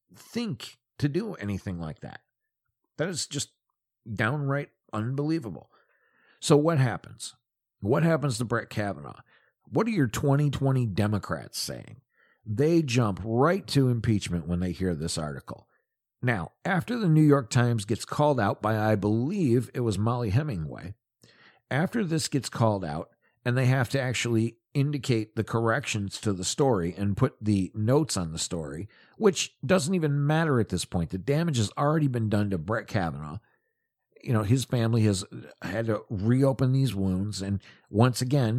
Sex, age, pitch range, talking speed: male, 50-69, 105-140 Hz, 160 wpm